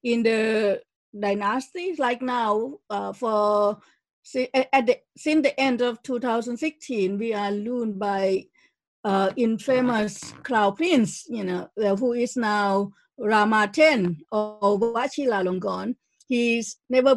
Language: English